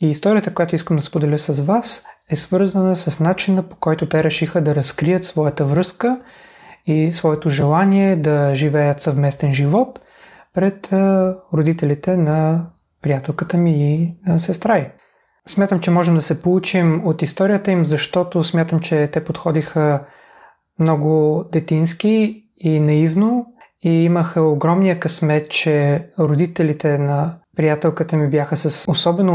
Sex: male